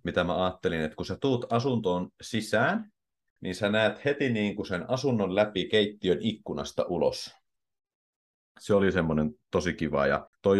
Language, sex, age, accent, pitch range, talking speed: Finnish, male, 30-49, native, 85-125 Hz, 145 wpm